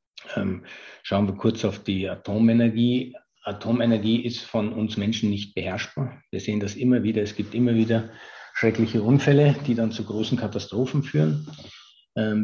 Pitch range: 100-115 Hz